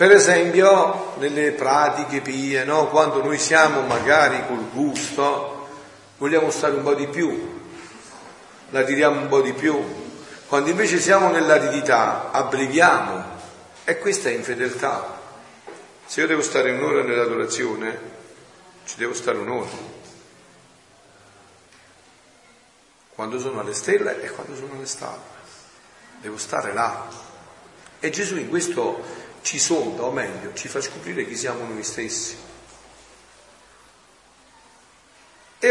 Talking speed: 120 wpm